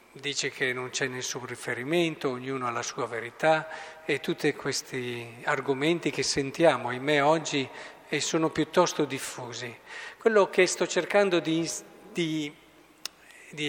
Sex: male